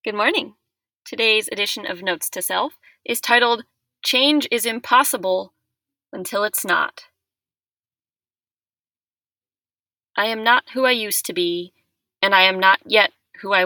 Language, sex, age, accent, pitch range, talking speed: English, female, 20-39, American, 175-230 Hz, 135 wpm